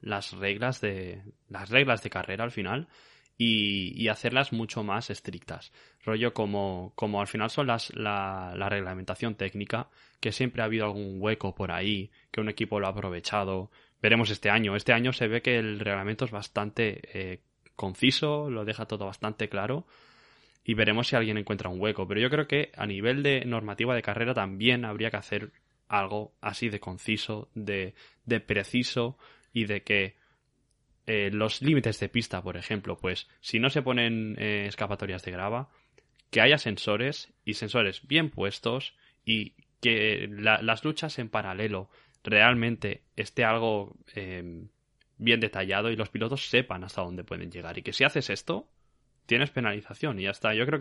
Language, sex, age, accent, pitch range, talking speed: Spanish, male, 20-39, Spanish, 100-120 Hz, 170 wpm